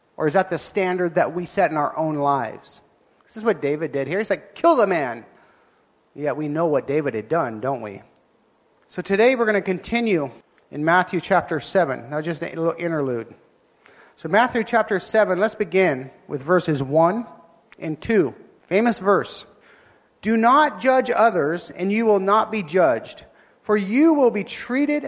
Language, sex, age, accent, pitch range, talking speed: English, male, 40-59, American, 175-230 Hz, 180 wpm